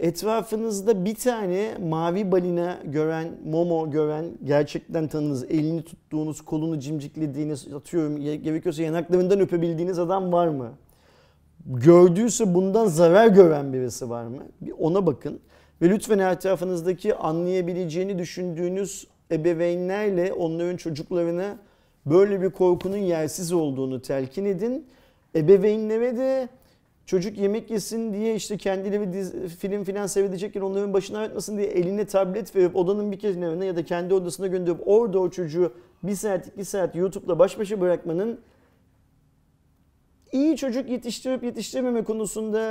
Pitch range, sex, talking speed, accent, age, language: 170-215 Hz, male, 120 wpm, native, 40-59, Turkish